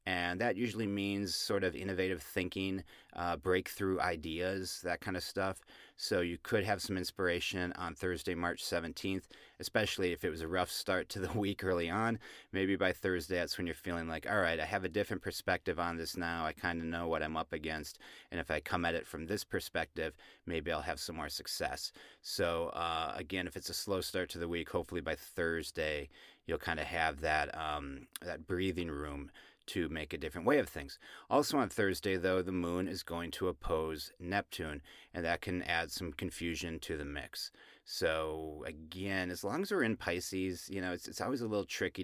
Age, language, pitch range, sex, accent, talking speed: 30-49, English, 85-95 Hz, male, American, 205 wpm